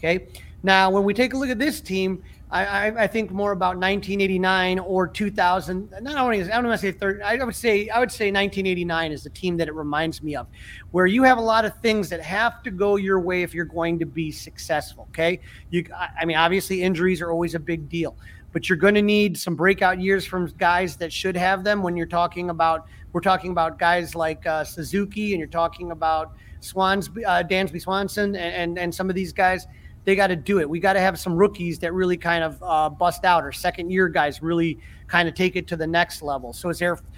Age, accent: 30-49, American